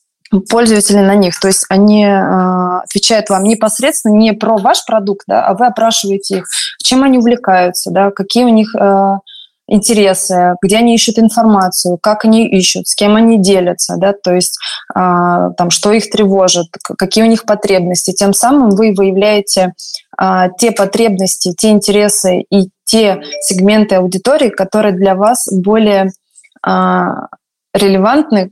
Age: 20-39